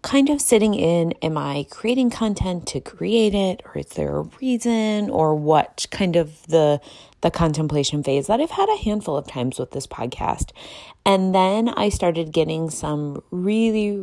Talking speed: 175 wpm